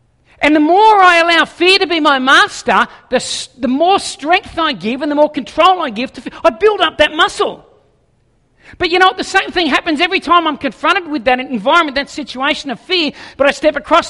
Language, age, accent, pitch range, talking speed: English, 50-69, Australian, 275-345 Hz, 220 wpm